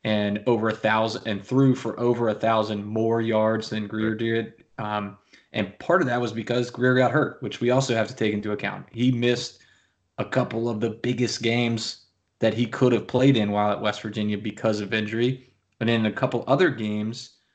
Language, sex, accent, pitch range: English, male, American, 105-120 Hz